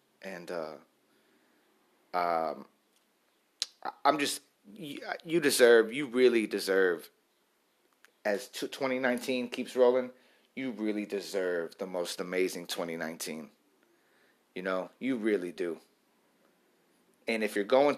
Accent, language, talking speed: American, English, 100 wpm